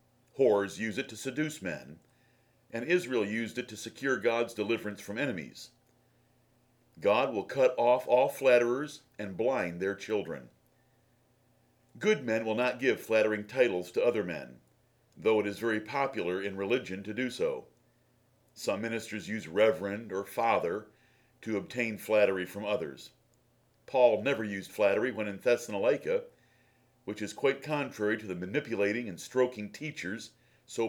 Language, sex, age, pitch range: English, male, 50-69, 105-130 Hz